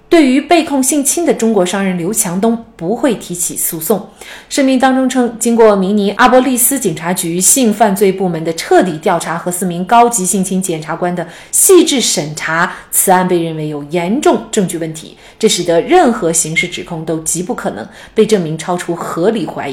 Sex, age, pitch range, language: female, 30-49, 170-230 Hz, Chinese